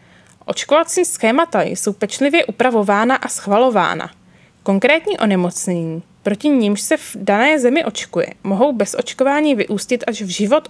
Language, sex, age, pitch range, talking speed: Czech, female, 20-39, 200-265 Hz, 130 wpm